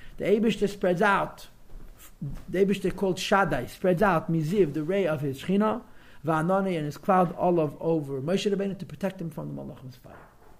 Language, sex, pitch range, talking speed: English, male, 155-210 Hz, 175 wpm